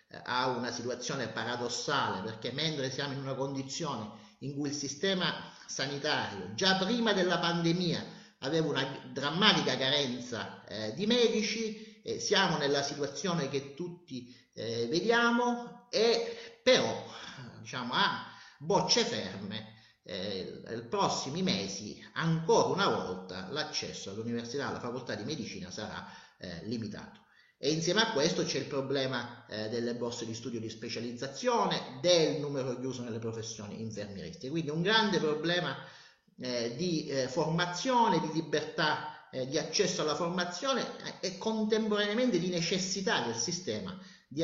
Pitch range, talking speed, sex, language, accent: 125-190 Hz, 130 wpm, male, Italian, native